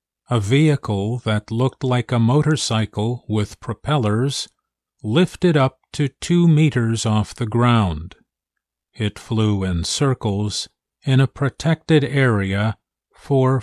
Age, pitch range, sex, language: 50-69, 100-130 Hz, male, Chinese